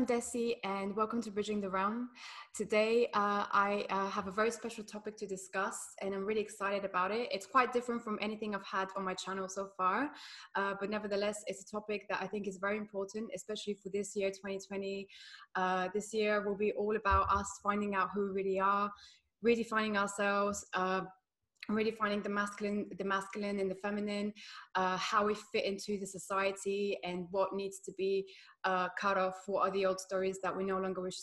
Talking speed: 200 wpm